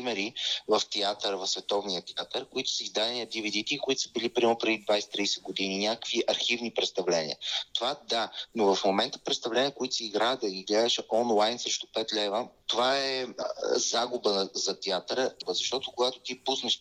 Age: 30-49